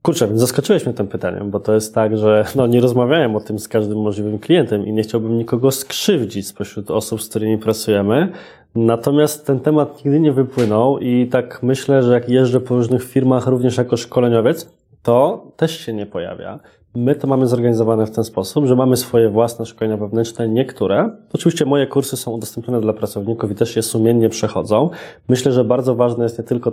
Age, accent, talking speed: 20-39, native, 195 wpm